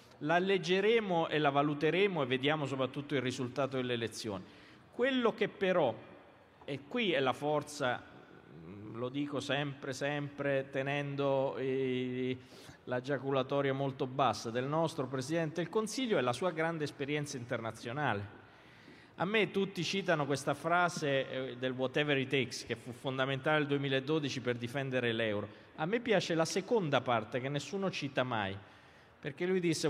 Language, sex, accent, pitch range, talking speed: Italian, male, native, 135-195 Hz, 145 wpm